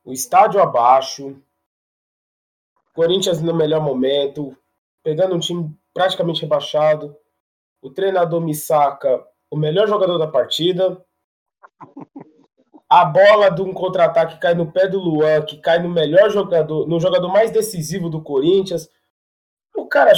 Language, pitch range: Portuguese, 150-195 Hz